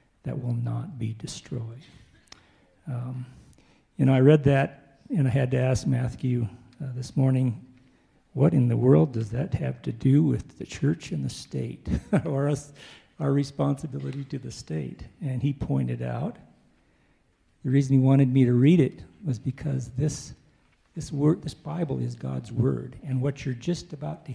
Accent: American